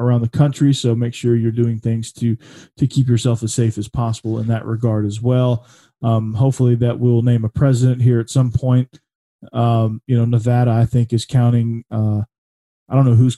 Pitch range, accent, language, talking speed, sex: 110-130 Hz, American, English, 205 wpm, male